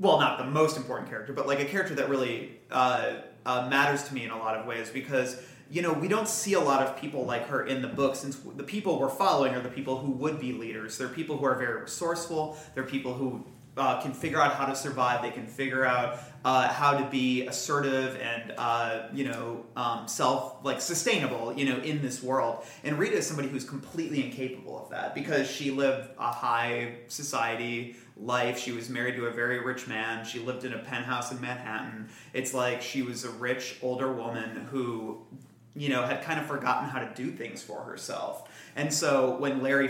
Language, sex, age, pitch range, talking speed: English, male, 30-49, 120-140 Hz, 215 wpm